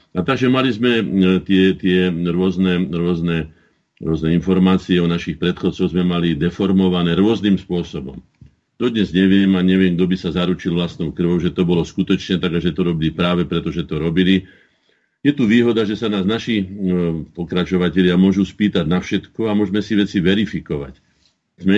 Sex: male